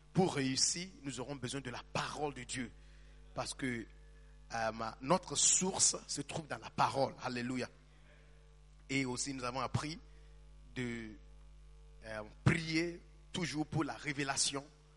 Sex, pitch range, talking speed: male, 125-150 Hz, 130 wpm